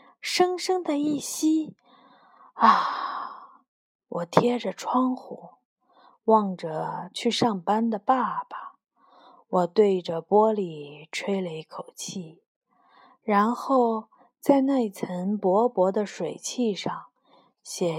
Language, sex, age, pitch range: Chinese, female, 20-39, 185-265 Hz